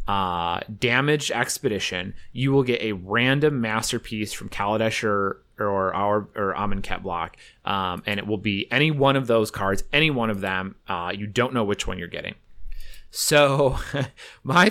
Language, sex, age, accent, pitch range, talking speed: English, male, 30-49, American, 100-130 Hz, 165 wpm